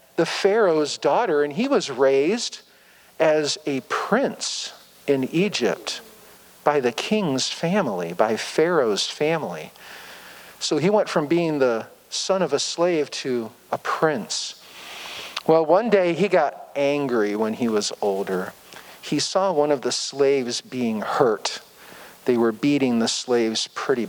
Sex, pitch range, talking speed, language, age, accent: male, 125-175 Hz, 140 wpm, English, 50-69, American